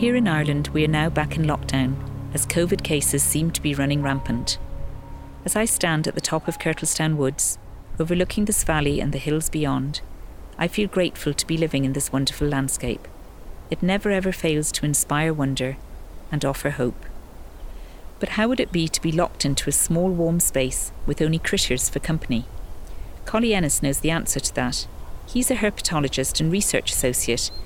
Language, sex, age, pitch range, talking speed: English, female, 50-69, 125-165 Hz, 180 wpm